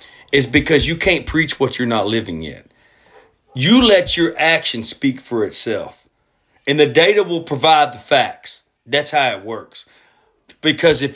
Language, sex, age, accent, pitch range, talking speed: English, male, 40-59, American, 115-160 Hz, 160 wpm